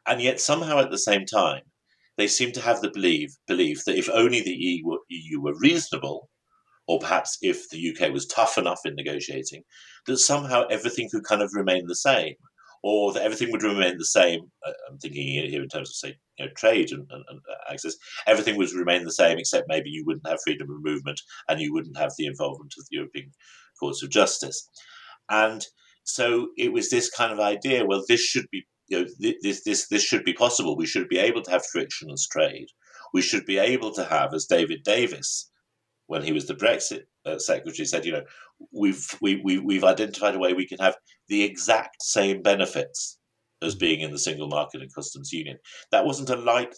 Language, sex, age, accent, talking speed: English, male, 50-69, British, 205 wpm